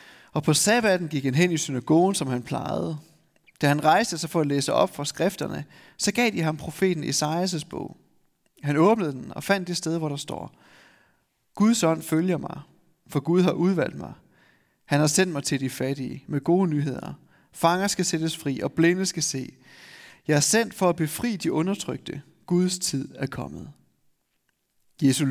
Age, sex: 30-49, male